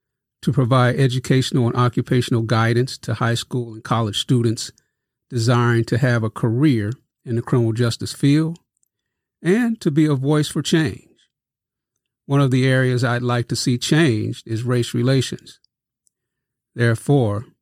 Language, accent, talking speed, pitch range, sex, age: English, American, 145 wpm, 115-135 Hz, male, 40-59